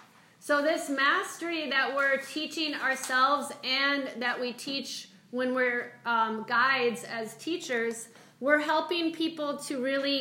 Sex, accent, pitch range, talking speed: female, American, 235-285 Hz, 130 wpm